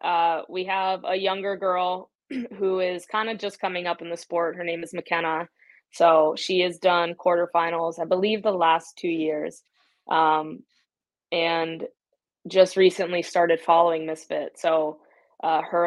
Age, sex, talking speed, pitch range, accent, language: 20-39, female, 155 wpm, 160-180 Hz, American, English